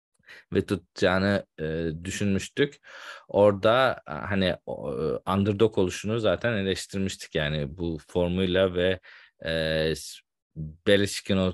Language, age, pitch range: Turkish, 40-59, 95-115 Hz